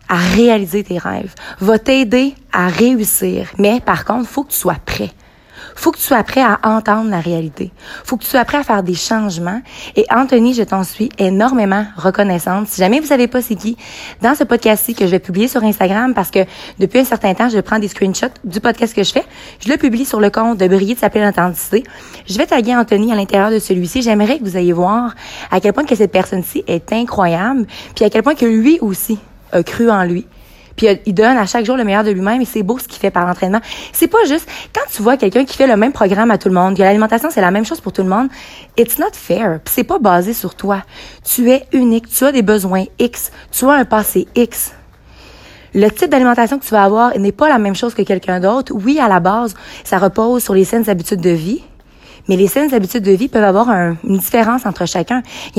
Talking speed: 240 wpm